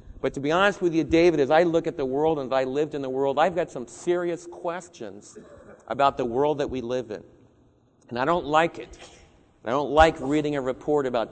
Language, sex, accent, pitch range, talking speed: English, male, American, 135-195 Hz, 235 wpm